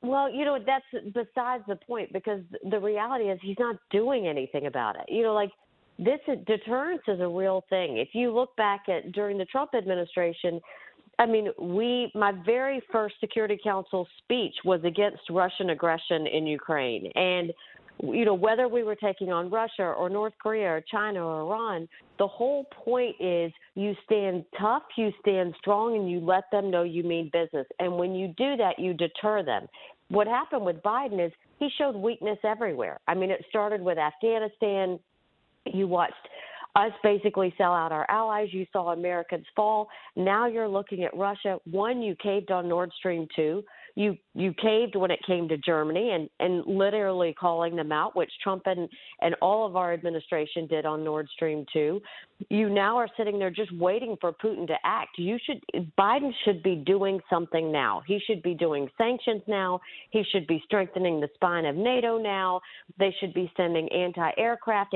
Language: English